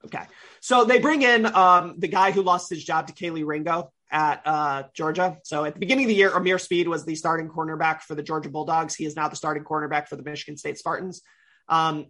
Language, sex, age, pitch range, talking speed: English, male, 30-49, 150-180 Hz, 235 wpm